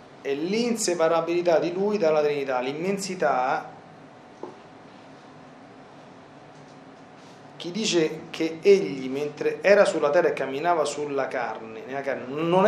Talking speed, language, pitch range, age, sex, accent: 105 wpm, Italian, 130-165 Hz, 40-59, male, native